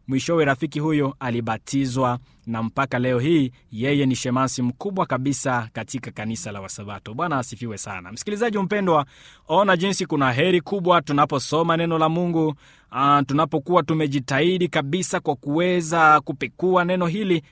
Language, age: Swahili, 20-39